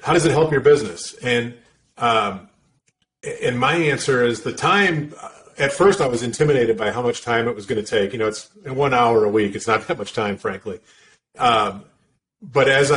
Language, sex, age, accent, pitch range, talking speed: English, male, 40-59, American, 120-145 Hz, 205 wpm